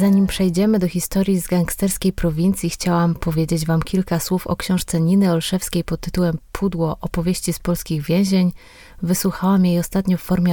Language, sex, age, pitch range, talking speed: Polish, female, 20-39, 165-190 Hz, 160 wpm